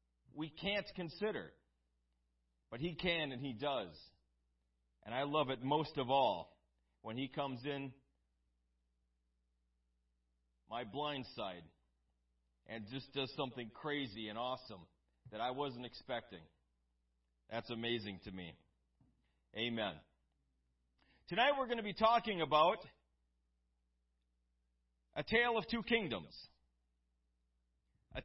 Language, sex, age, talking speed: English, male, 40-59, 110 wpm